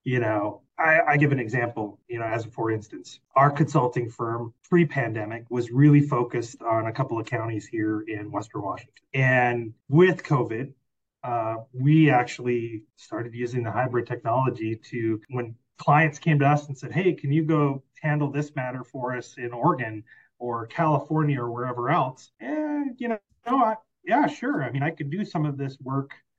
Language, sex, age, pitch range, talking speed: English, male, 30-49, 115-145 Hz, 180 wpm